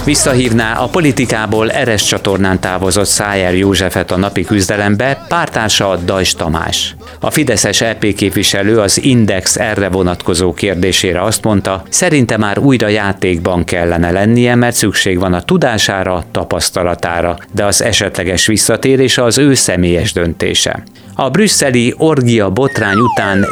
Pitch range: 95-115 Hz